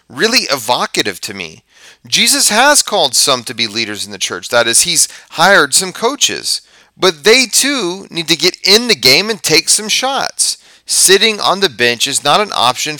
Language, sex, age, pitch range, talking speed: English, male, 30-49, 120-190 Hz, 190 wpm